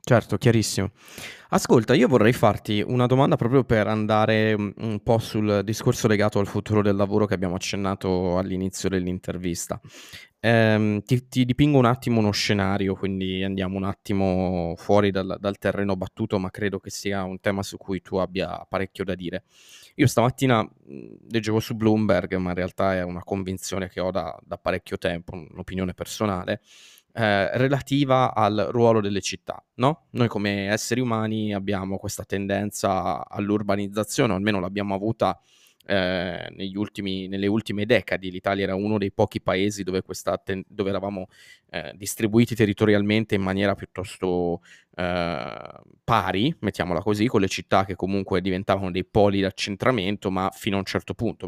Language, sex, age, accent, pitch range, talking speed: Italian, male, 20-39, native, 95-110 Hz, 155 wpm